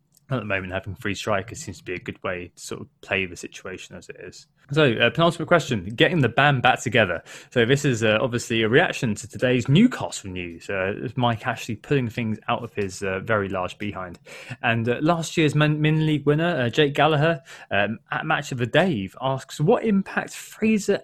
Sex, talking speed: male, 210 wpm